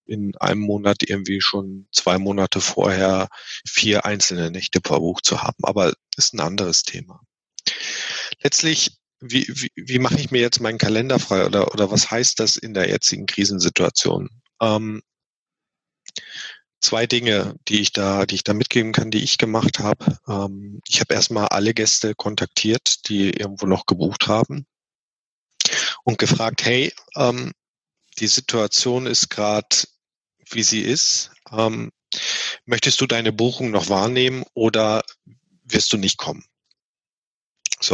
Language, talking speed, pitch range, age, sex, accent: German, 145 wpm, 100-120 Hz, 40-59, male, German